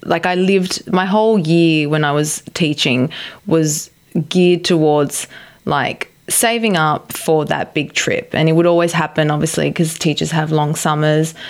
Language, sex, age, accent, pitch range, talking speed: English, female, 20-39, Australian, 155-195 Hz, 160 wpm